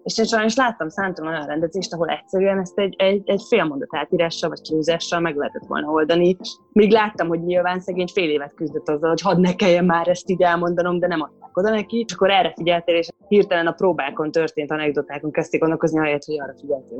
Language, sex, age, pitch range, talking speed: Hungarian, female, 20-39, 160-195 Hz, 210 wpm